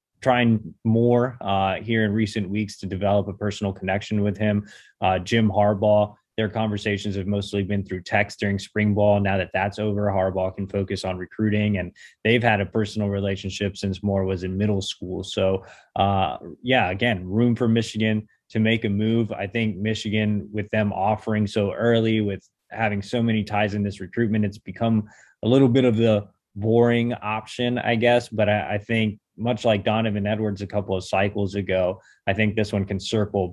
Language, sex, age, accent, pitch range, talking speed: English, male, 20-39, American, 100-110 Hz, 190 wpm